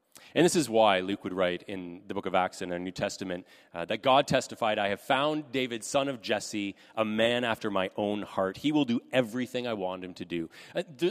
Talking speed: 230 wpm